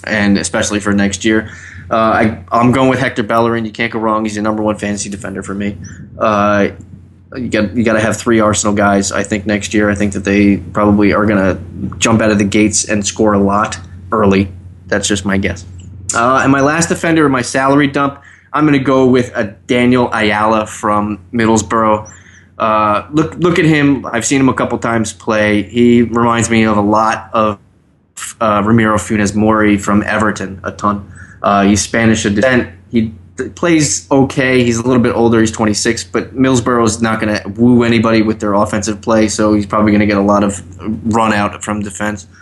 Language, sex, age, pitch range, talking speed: English, male, 20-39, 100-115 Hz, 200 wpm